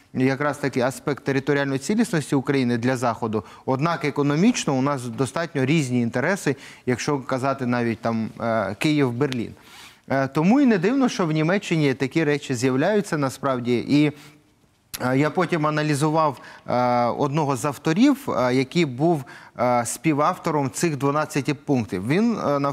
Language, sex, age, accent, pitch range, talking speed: Ukrainian, male, 30-49, native, 135-190 Hz, 120 wpm